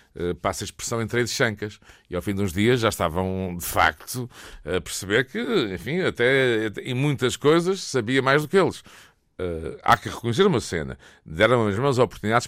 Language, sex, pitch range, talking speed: Portuguese, male, 105-160 Hz, 200 wpm